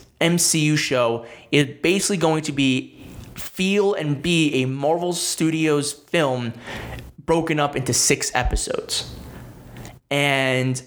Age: 20-39